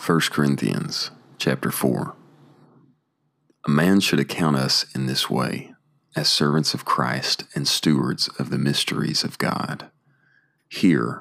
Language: English